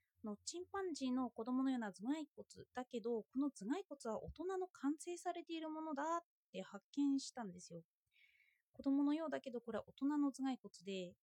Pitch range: 210-315 Hz